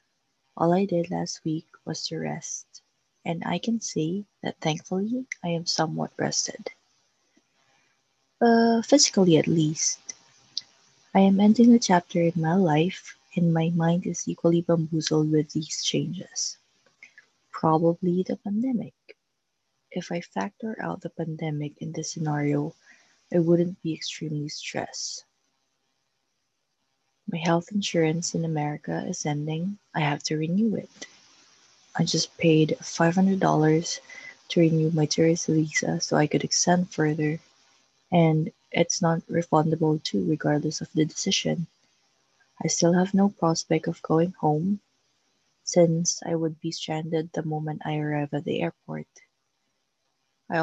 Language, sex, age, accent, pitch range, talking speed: English, female, 20-39, Filipino, 155-180 Hz, 135 wpm